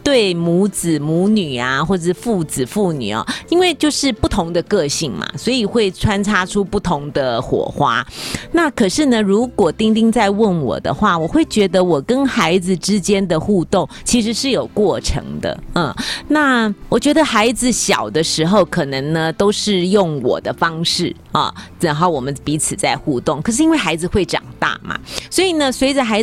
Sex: female